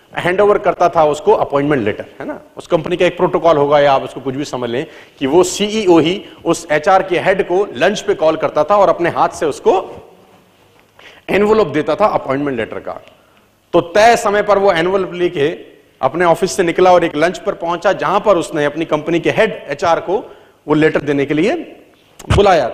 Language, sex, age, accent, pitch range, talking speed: Hindi, male, 40-59, native, 165-210 Hz, 100 wpm